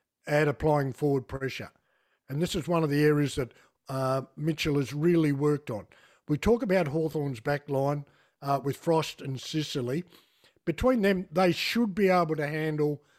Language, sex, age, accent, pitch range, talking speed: English, male, 50-69, Australian, 140-170 Hz, 170 wpm